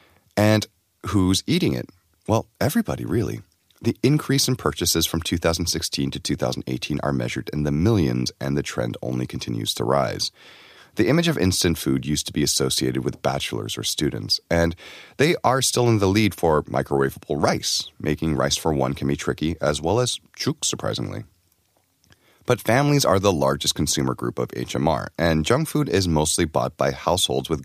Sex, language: male, Korean